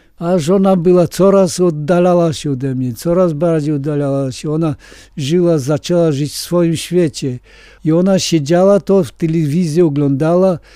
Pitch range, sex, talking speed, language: 145-180 Hz, male, 145 wpm, Polish